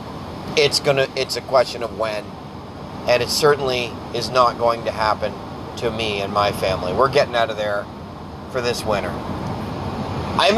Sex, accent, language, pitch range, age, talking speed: male, American, English, 110-140 Hz, 30-49, 165 wpm